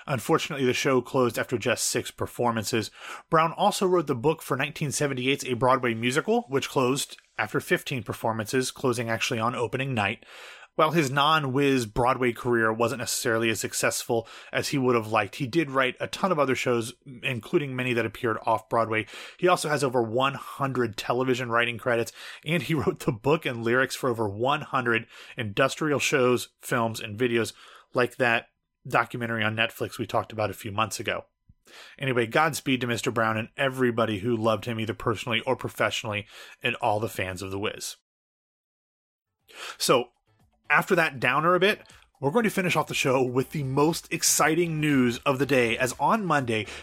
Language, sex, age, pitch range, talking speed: English, male, 30-49, 115-150 Hz, 175 wpm